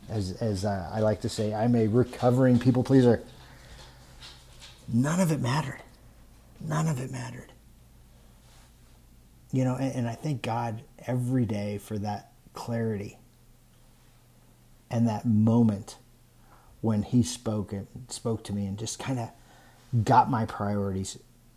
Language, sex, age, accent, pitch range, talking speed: English, male, 40-59, American, 105-120 Hz, 135 wpm